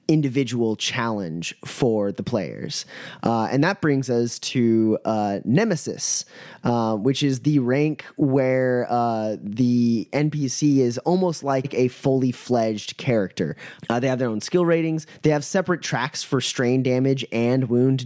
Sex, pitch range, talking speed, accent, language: male, 110-140 Hz, 150 wpm, American, English